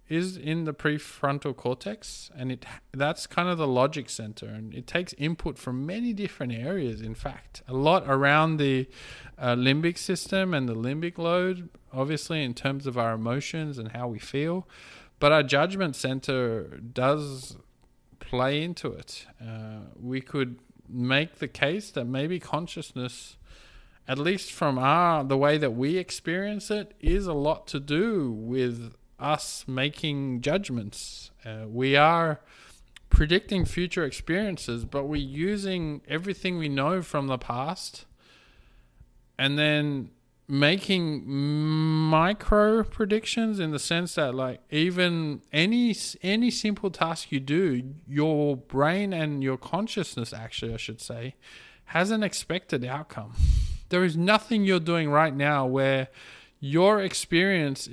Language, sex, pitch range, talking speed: English, male, 130-175 Hz, 140 wpm